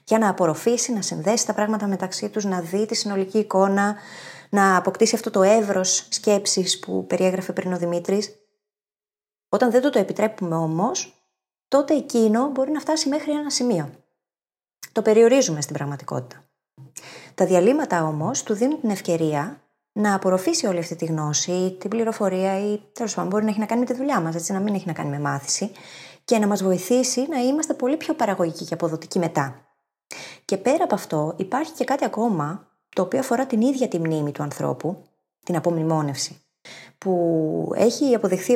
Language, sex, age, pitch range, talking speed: Greek, female, 20-39, 170-230 Hz, 175 wpm